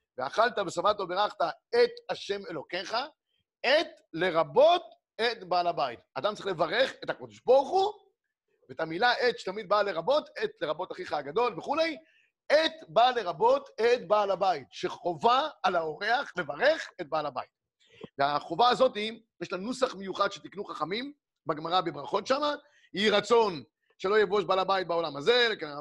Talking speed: 145 wpm